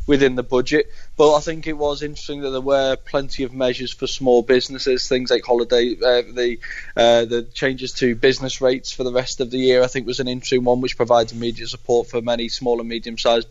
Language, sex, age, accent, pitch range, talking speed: English, male, 20-39, British, 115-130 Hz, 220 wpm